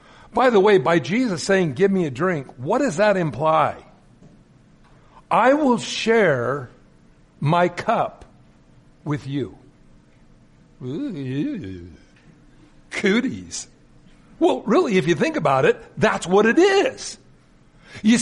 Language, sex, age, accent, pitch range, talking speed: English, male, 60-79, American, 155-215 Hz, 110 wpm